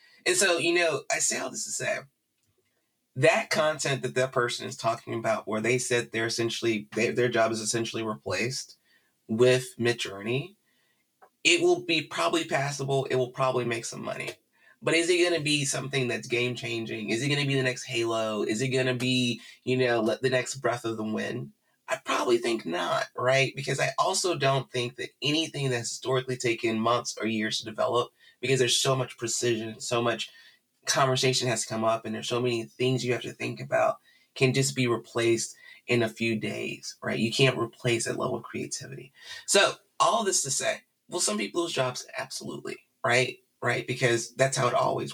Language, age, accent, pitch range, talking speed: English, 30-49, American, 115-135 Hz, 200 wpm